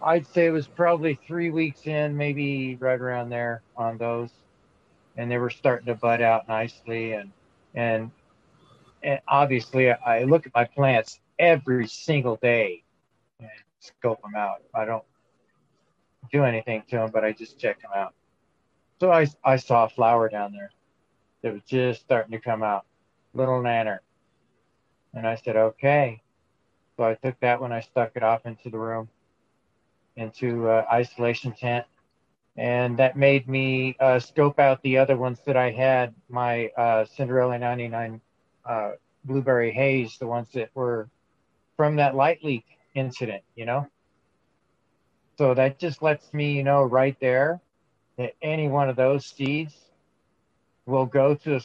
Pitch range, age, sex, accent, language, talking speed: 115-140 Hz, 40-59, male, American, English, 160 wpm